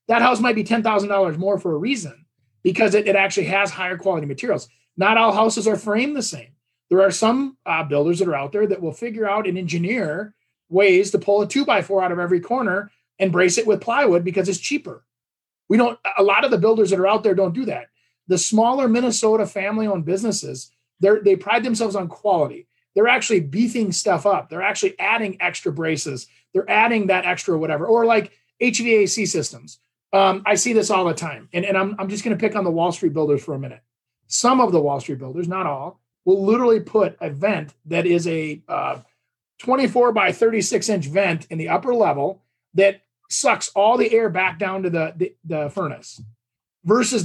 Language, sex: English, male